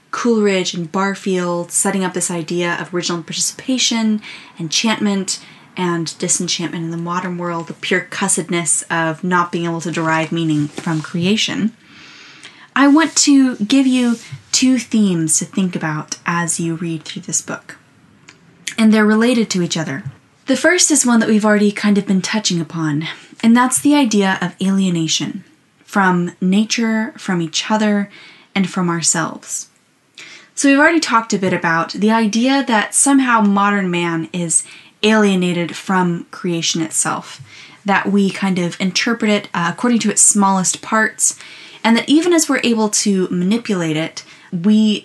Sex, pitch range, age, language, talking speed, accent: female, 175-225 Hz, 10-29, English, 155 wpm, American